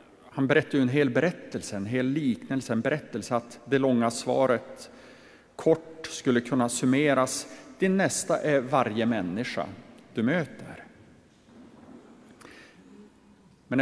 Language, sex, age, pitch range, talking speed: Swedish, male, 50-69, 110-155 Hz, 105 wpm